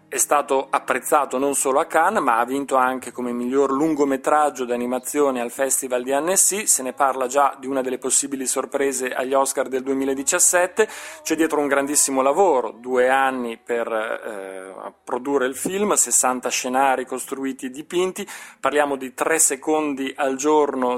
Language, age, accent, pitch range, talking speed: Italian, 30-49, native, 125-145 Hz, 160 wpm